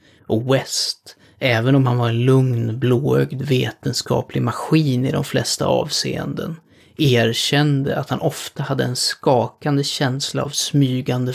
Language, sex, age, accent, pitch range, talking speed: Swedish, male, 30-49, native, 120-140 Hz, 130 wpm